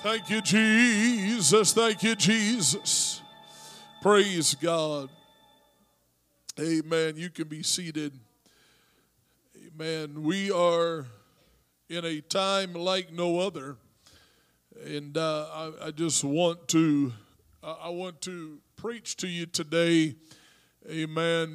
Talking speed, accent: 105 wpm, American